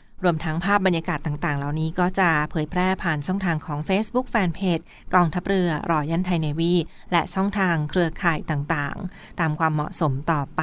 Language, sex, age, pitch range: Thai, female, 20-39, 160-190 Hz